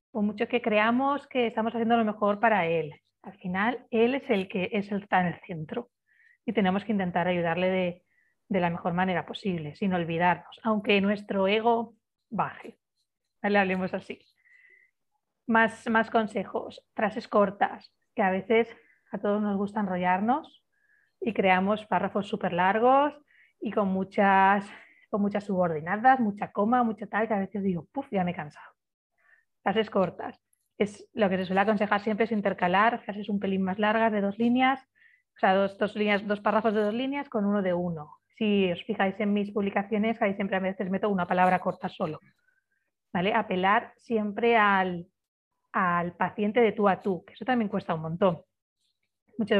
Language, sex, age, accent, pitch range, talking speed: Spanish, female, 30-49, Spanish, 190-230 Hz, 175 wpm